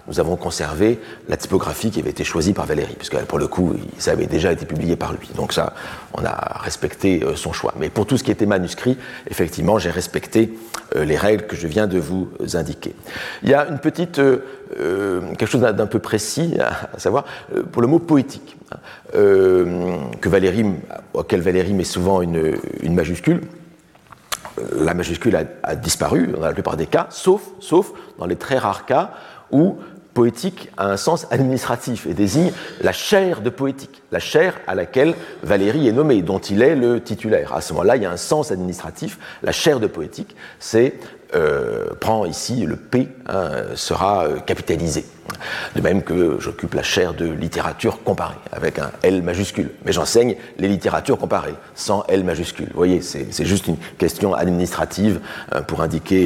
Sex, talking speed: male, 180 wpm